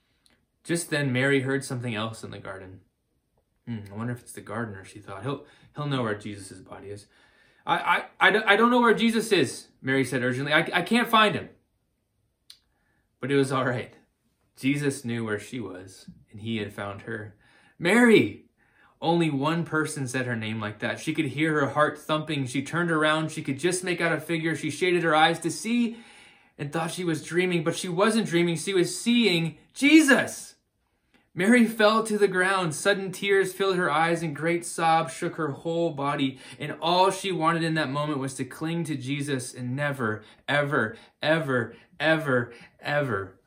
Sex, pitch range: male, 120-170 Hz